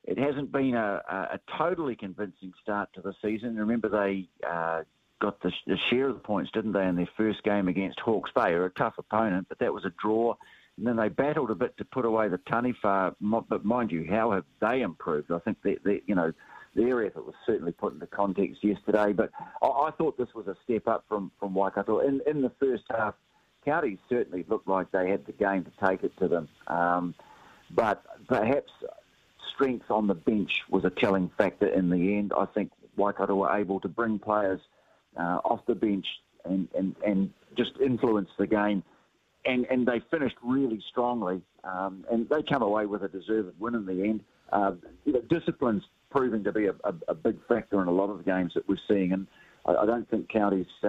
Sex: male